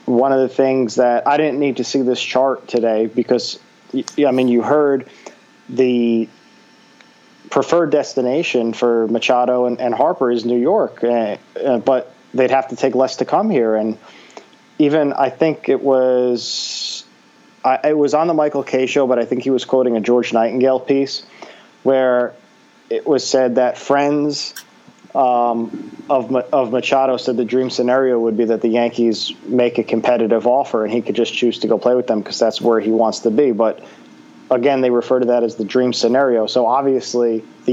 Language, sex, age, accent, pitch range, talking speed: English, male, 30-49, American, 115-130 Hz, 185 wpm